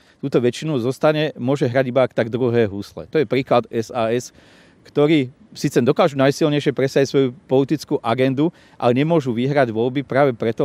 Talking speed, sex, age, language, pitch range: 150 wpm, male, 40-59, Slovak, 120-145 Hz